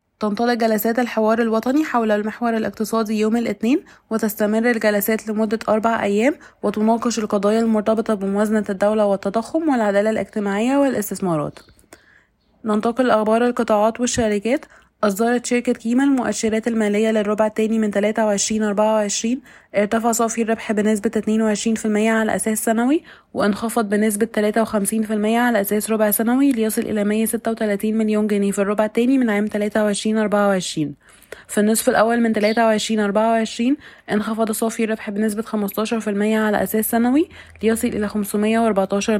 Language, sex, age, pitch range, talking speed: Arabic, female, 20-39, 210-230 Hz, 125 wpm